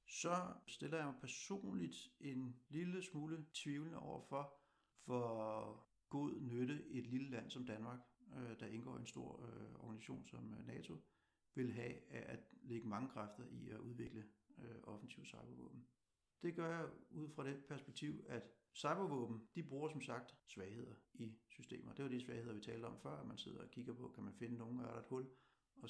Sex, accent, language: male, native, Danish